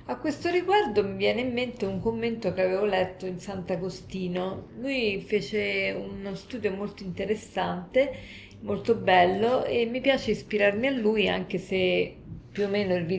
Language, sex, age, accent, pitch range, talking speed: Italian, female, 40-59, native, 185-245 Hz, 155 wpm